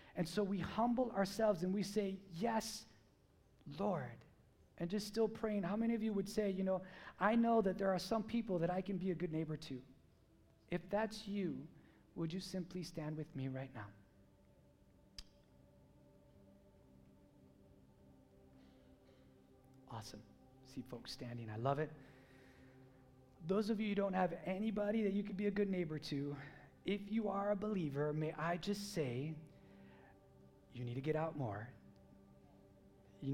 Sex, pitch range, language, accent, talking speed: male, 130-190 Hz, English, American, 155 wpm